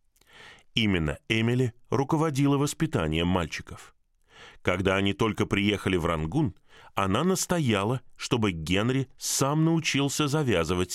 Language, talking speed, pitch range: Russian, 100 wpm, 95-140 Hz